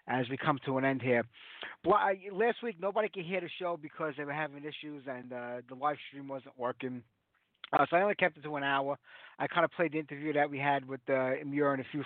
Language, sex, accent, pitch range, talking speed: English, male, American, 135-165 Hz, 260 wpm